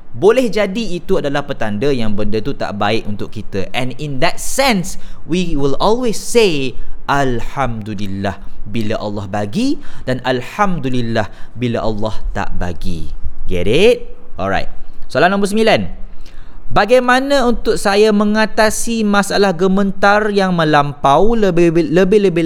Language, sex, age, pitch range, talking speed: Malay, male, 20-39, 110-175 Hz, 120 wpm